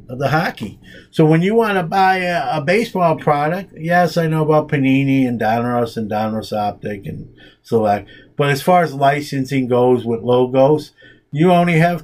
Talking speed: 180 wpm